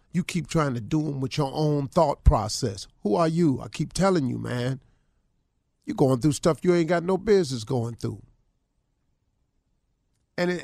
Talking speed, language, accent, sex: 175 wpm, English, American, male